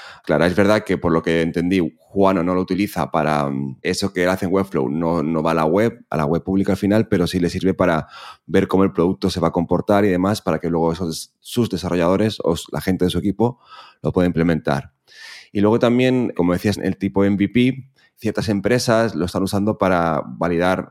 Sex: male